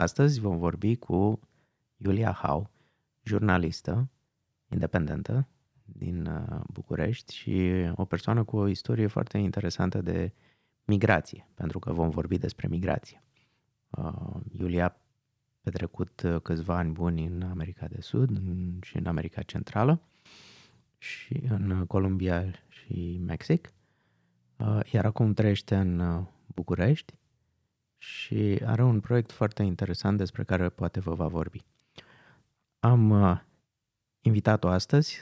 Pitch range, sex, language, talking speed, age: 90-120 Hz, male, Romanian, 110 wpm, 30-49